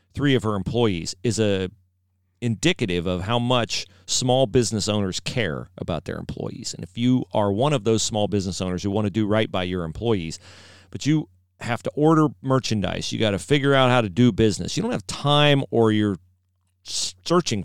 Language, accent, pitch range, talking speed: English, American, 95-130 Hz, 195 wpm